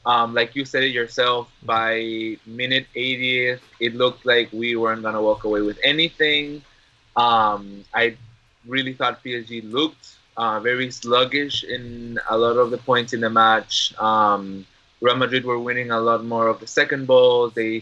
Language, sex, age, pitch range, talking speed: English, male, 20-39, 110-125 Hz, 170 wpm